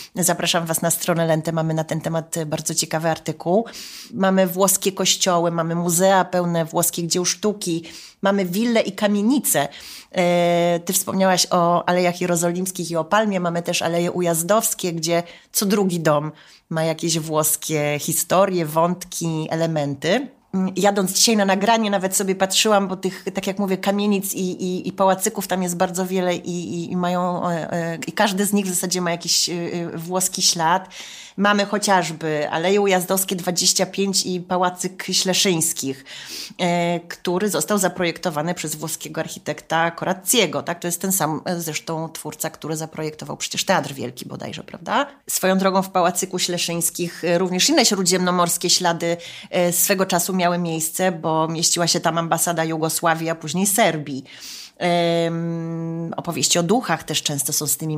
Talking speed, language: 145 wpm, Polish